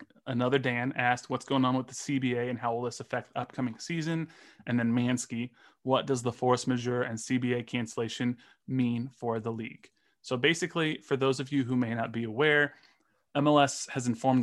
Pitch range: 115-135 Hz